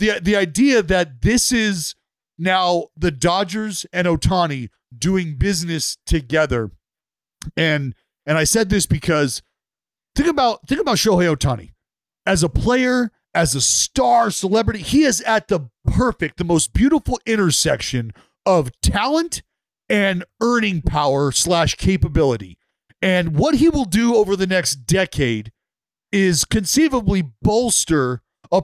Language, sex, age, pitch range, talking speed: English, male, 40-59, 160-225 Hz, 130 wpm